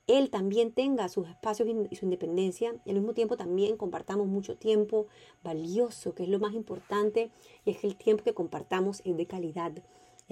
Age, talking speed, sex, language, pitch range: 30-49, 190 wpm, female, Spanish, 180-220 Hz